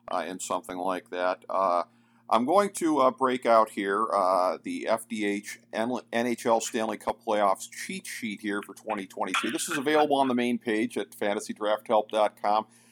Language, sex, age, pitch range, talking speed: English, male, 50-69, 110-130 Hz, 155 wpm